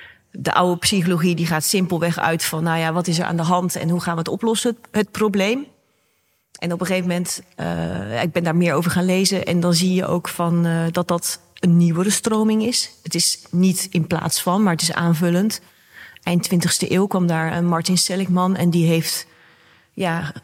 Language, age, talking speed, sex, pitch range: Dutch, 40-59, 210 wpm, female, 170-190 Hz